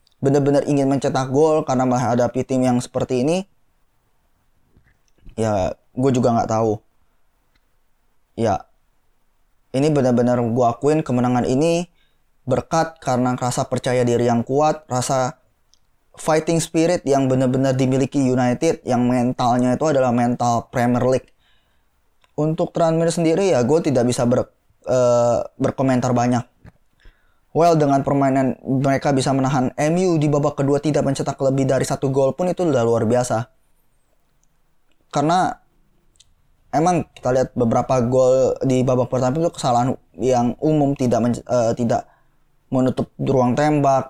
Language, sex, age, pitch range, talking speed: Indonesian, male, 20-39, 125-145 Hz, 130 wpm